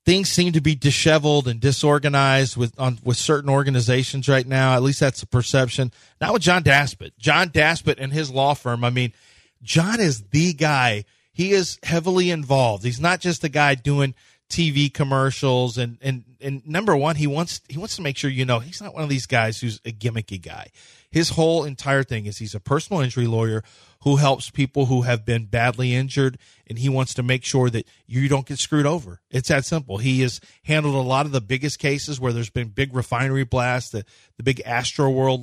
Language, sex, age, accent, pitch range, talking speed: English, male, 30-49, American, 125-145 Hz, 215 wpm